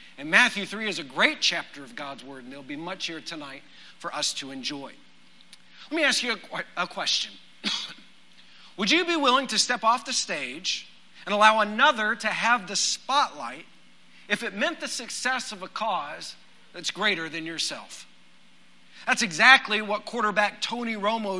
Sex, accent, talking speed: male, American, 170 wpm